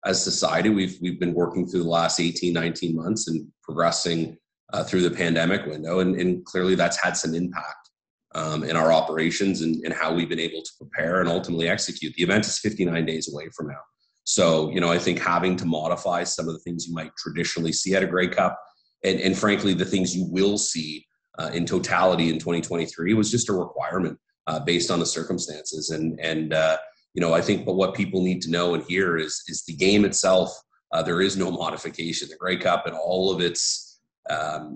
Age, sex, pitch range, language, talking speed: 30-49, male, 80-95 Hz, English, 215 wpm